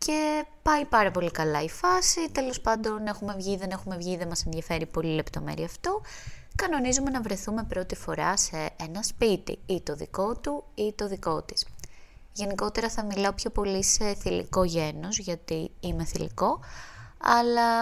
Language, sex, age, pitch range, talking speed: Greek, female, 20-39, 150-205 Hz, 165 wpm